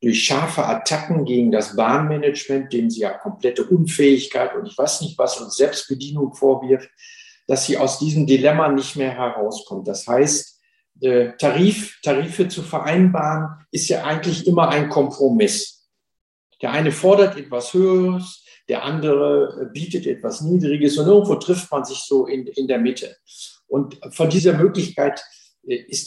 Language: German